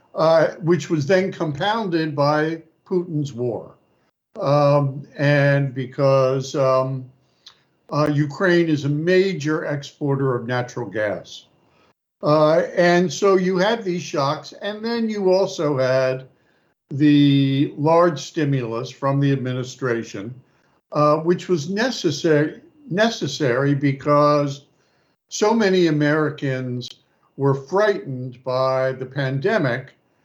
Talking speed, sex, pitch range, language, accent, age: 105 wpm, male, 135-170 Hz, English, American, 60-79